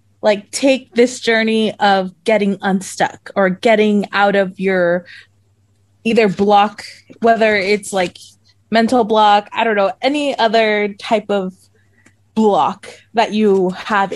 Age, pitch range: 20-39, 195-240 Hz